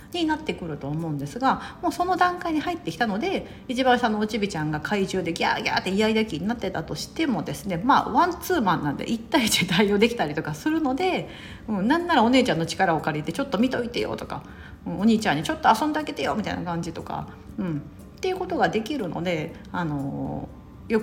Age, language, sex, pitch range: 40-59, Japanese, female, 170-255 Hz